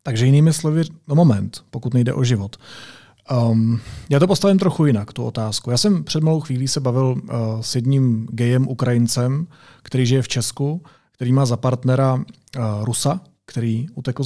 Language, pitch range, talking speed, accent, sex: Czech, 115-150 Hz, 160 wpm, native, male